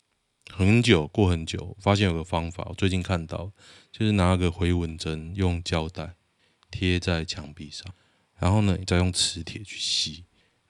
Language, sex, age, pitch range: Chinese, male, 20-39, 85-110 Hz